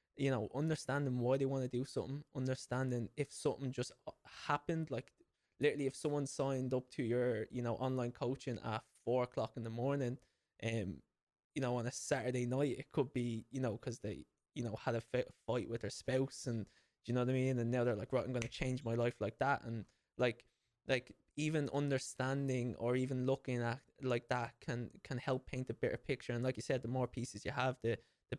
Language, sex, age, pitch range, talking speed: English, male, 20-39, 120-135 Hz, 225 wpm